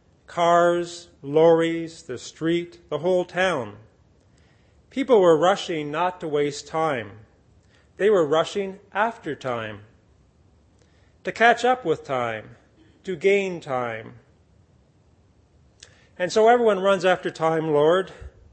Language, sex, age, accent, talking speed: English, male, 40-59, American, 110 wpm